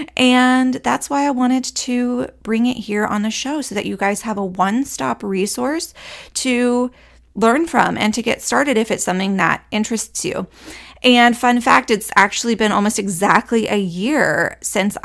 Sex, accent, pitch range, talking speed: female, American, 190-245 Hz, 175 wpm